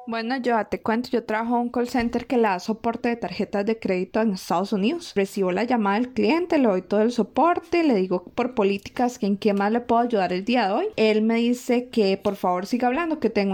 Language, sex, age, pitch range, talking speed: Spanish, female, 20-39, 210-250 Hz, 250 wpm